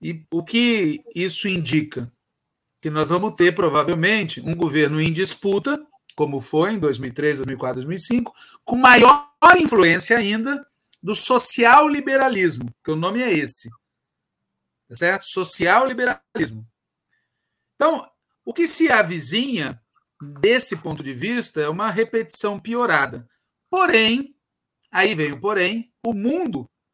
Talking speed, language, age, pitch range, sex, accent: 120 wpm, Portuguese, 40-59, 165-260 Hz, male, Brazilian